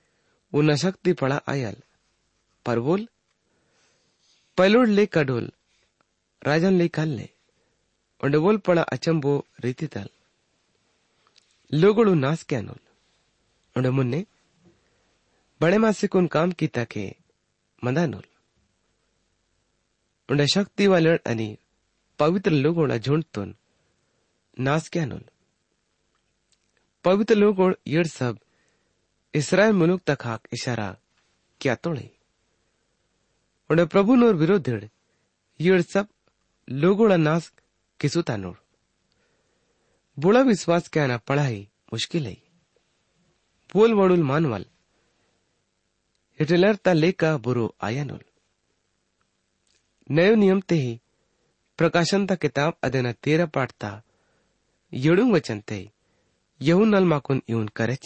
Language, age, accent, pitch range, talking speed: English, 30-49, Indian, 105-175 Hz, 60 wpm